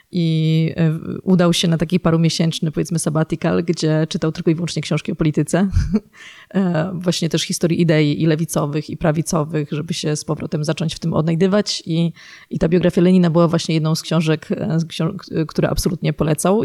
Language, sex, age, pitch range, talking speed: Polish, female, 30-49, 155-180 Hz, 160 wpm